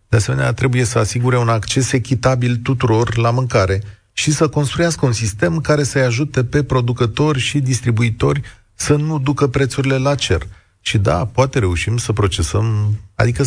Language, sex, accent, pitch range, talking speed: Romanian, male, native, 110-140 Hz, 160 wpm